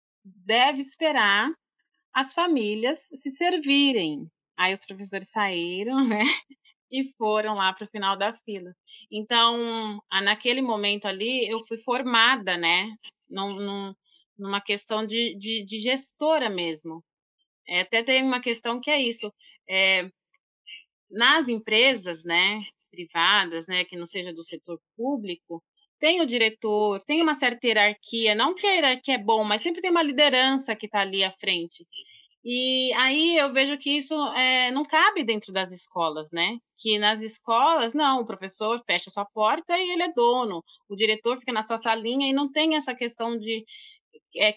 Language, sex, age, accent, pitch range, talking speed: Portuguese, female, 30-49, Brazilian, 200-260 Hz, 150 wpm